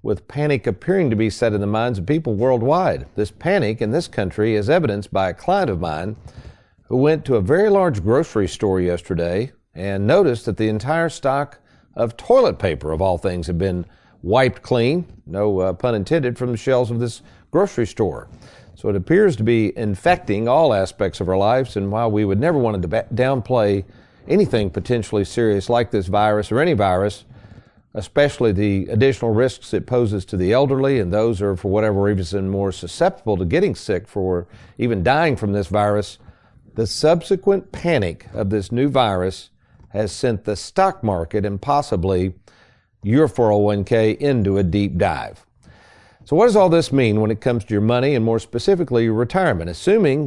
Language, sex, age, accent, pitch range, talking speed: English, male, 50-69, American, 100-130 Hz, 180 wpm